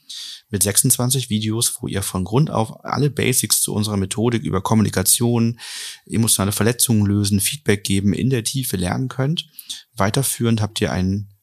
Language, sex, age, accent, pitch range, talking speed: German, male, 30-49, German, 95-115 Hz, 150 wpm